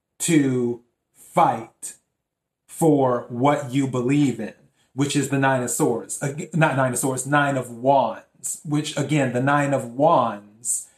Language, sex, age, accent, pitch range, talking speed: English, male, 30-49, American, 125-150 Hz, 140 wpm